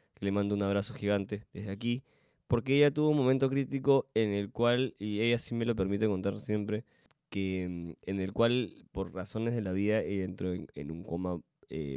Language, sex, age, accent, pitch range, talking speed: Spanish, male, 20-39, Argentinian, 95-120 Hz, 195 wpm